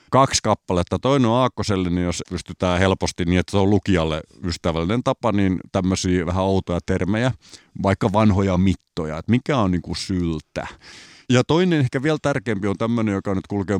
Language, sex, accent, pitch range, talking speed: Finnish, male, native, 90-120 Hz, 170 wpm